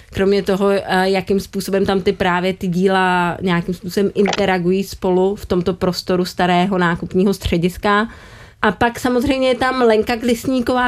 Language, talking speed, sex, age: Czech, 145 wpm, female, 30-49